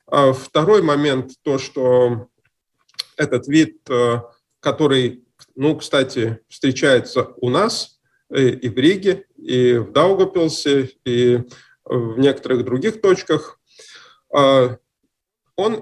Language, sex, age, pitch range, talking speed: Russian, male, 20-39, 130-165 Hz, 90 wpm